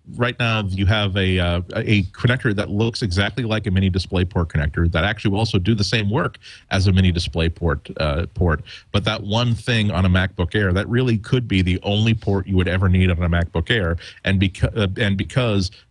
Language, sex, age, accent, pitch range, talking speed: English, male, 40-59, American, 90-110 Hz, 225 wpm